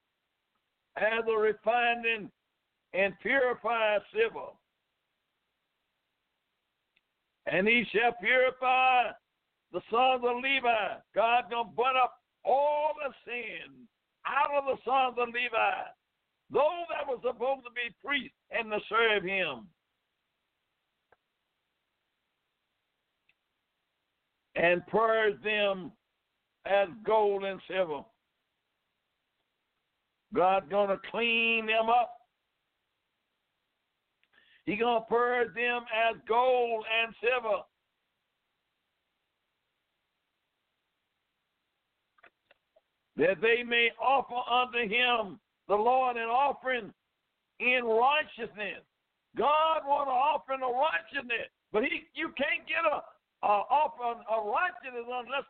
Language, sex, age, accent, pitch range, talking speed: English, male, 60-79, American, 220-270 Hz, 100 wpm